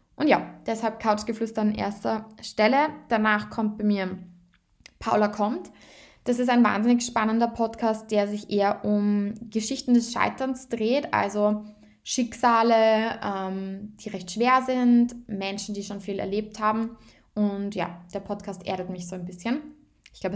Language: German